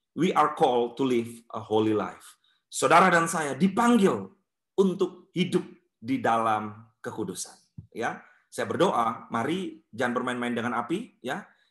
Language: Indonesian